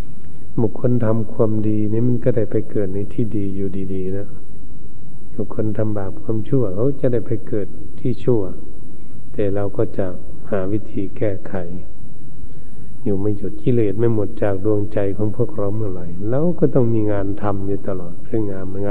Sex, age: male, 60-79